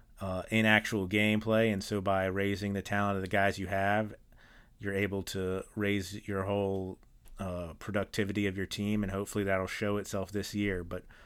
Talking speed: 180 wpm